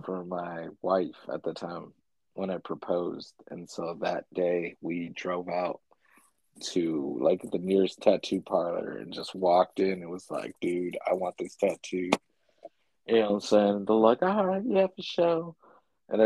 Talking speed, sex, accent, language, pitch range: 175 wpm, male, American, English, 95-120 Hz